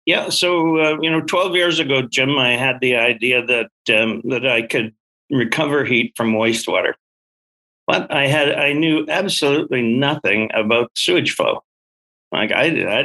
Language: English